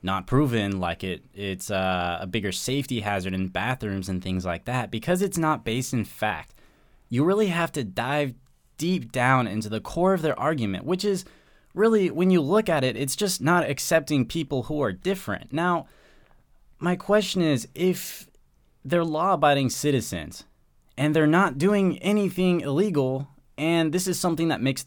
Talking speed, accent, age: 170 wpm, American, 20-39